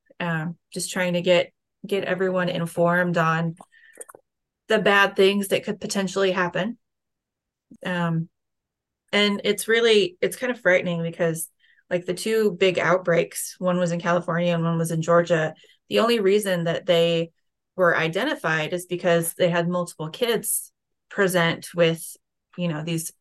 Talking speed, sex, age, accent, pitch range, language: 145 wpm, female, 30-49, American, 170-195 Hz, English